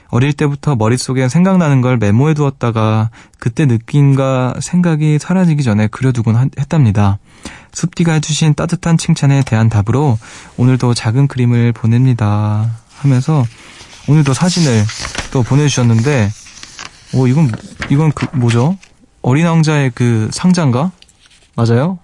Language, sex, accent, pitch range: Korean, male, native, 115-155 Hz